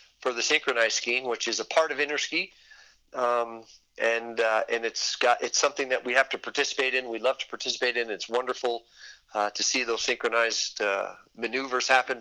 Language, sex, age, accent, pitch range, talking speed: English, male, 40-59, American, 115-125 Hz, 190 wpm